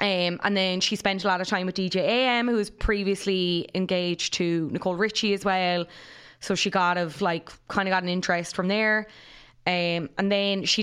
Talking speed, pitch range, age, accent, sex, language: 205 wpm, 175-205 Hz, 20-39, Irish, female, English